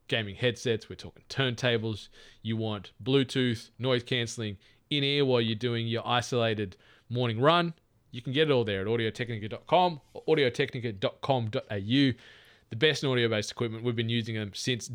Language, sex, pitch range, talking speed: English, male, 105-130 Hz, 155 wpm